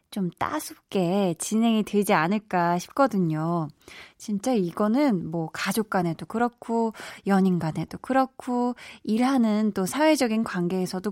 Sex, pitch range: female, 185-285 Hz